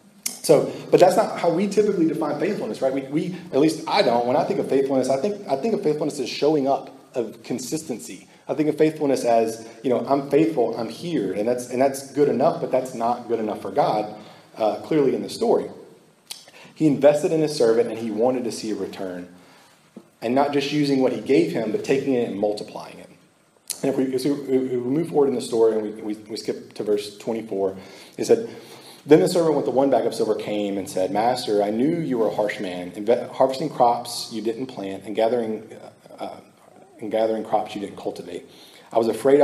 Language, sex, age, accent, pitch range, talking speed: English, male, 30-49, American, 110-140 Hz, 220 wpm